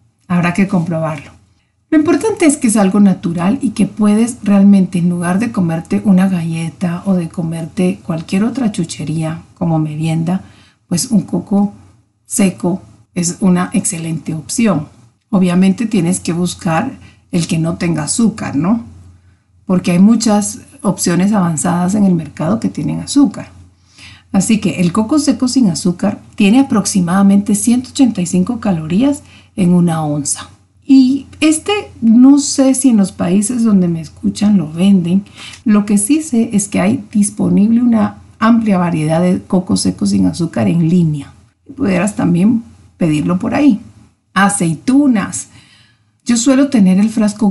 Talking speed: 145 wpm